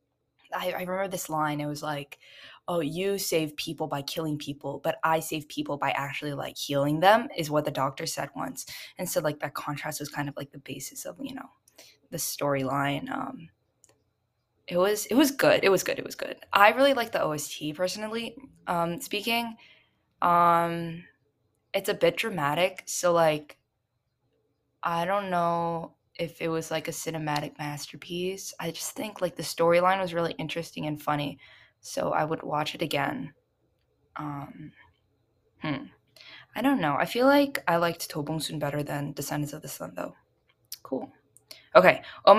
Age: 10-29